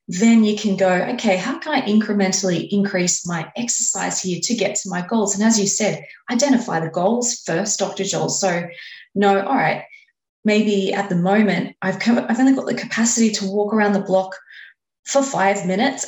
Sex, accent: female, Australian